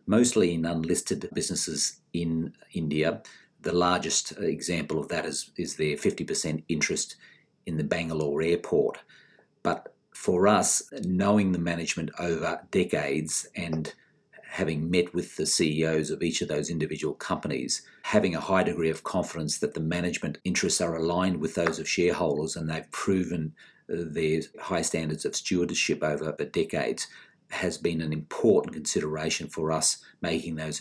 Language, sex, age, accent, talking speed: English, male, 50-69, Australian, 145 wpm